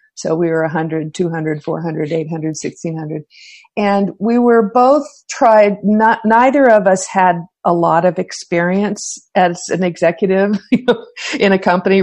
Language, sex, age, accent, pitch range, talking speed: Polish, female, 50-69, American, 165-205 Hz, 140 wpm